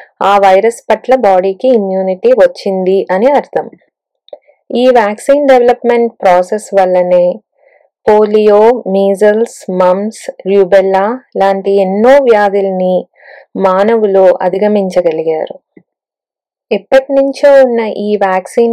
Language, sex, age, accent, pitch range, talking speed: Telugu, female, 20-39, native, 190-240 Hz, 85 wpm